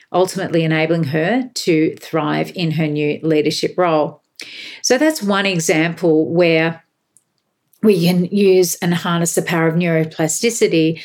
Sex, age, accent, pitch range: female, 50-69, Australian, 165-210 Hz